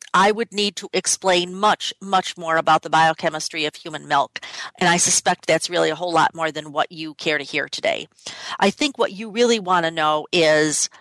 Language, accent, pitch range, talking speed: English, American, 160-220 Hz, 215 wpm